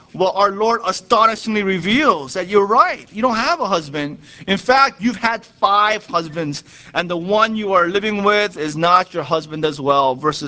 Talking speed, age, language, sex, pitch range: 190 wpm, 30-49, English, male, 175-225 Hz